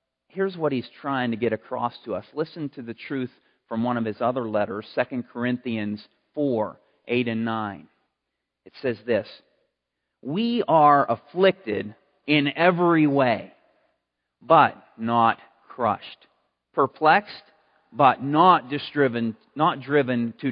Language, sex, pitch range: English, male, 125-170 Hz